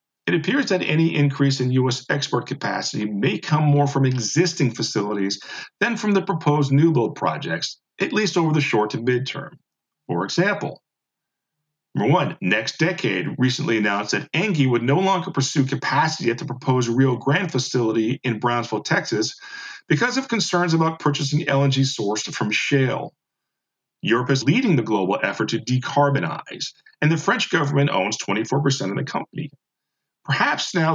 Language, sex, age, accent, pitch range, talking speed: English, male, 50-69, American, 130-165 Hz, 155 wpm